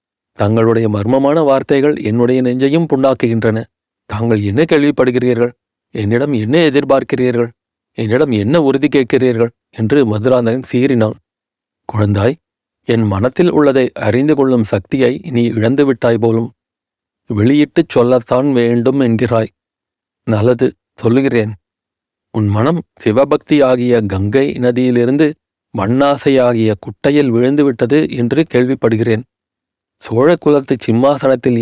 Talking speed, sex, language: 95 wpm, male, Tamil